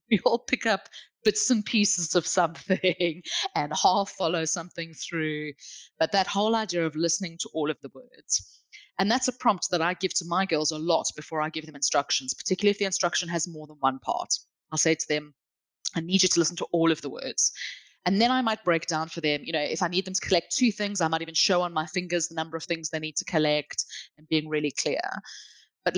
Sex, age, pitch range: female, 20-39, 160-225 Hz